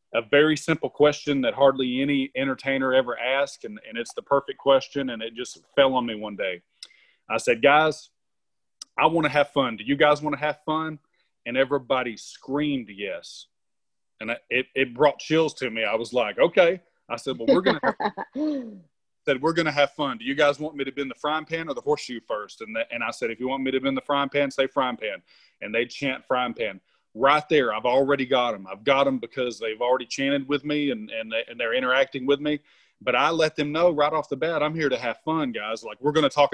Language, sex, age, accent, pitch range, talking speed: English, male, 30-49, American, 130-155 Hz, 235 wpm